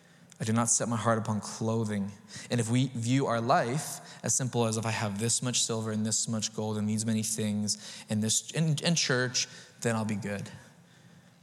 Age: 20-39